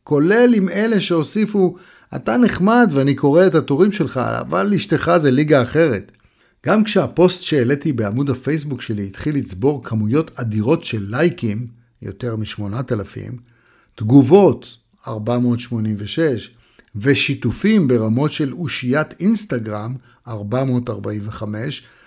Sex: male